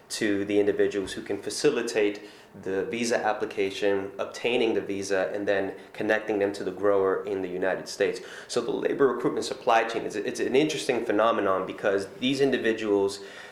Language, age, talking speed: English, 20-39, 165 wpm